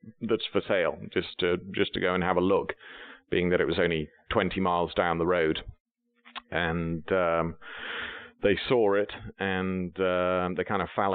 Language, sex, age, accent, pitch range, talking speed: English, male, 40-59, British, 90-100 Hz, 185 wpm